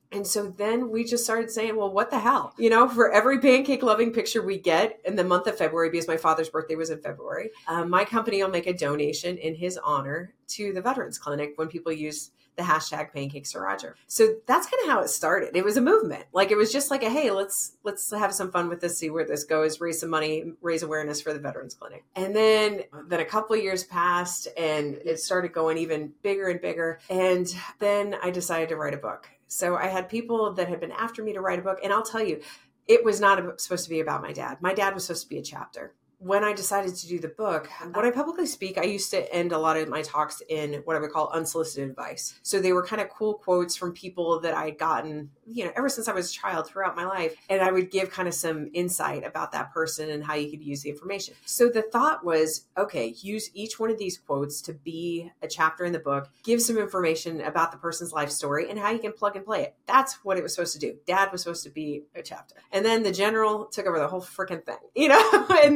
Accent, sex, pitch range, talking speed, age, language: American, female, 160-215 Hz, 255 wpm, 30-49, English